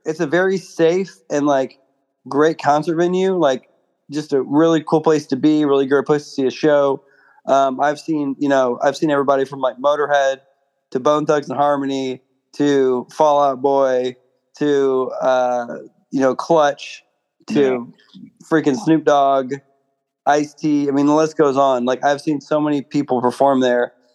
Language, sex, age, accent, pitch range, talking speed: English, male, 20-39, American, 130-150 Hz, 170 wpm